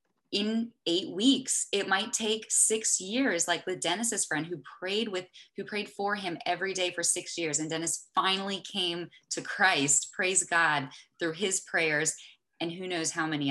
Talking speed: 170 wpm